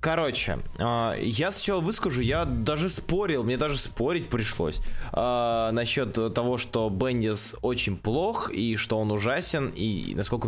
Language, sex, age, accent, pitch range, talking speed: Russian, male, 20-39, native, 110-155 Hz, 130 wpm